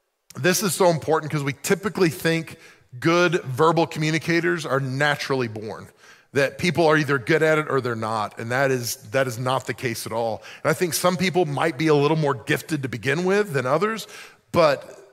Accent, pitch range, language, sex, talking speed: American, 135-175 Hz, English, male, 200 wpm